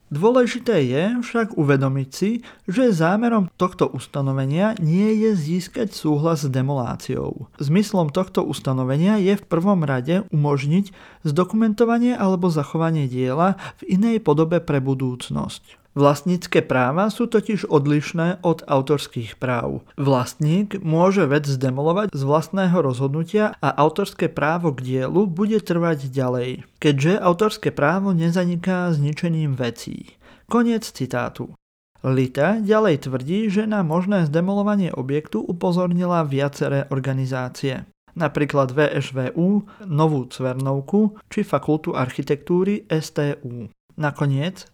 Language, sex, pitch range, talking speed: Slovak, male, 140-190 Hz, 110 wpm